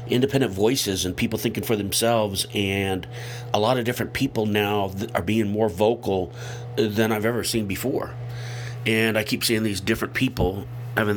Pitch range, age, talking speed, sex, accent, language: 110-125 Hz, 50-69, 170 wpm, male, American, English